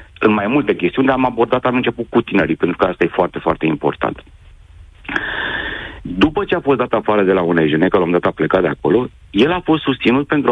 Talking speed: 220 wpm